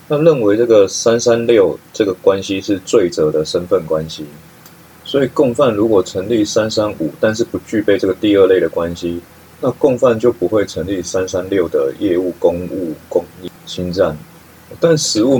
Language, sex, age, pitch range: Chinese, male, 30-49, 85-120 Hz